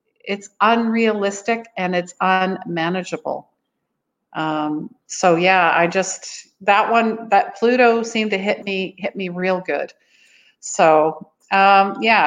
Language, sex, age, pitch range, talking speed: English, female, 50-69, 170-210 Hz, 120 wpm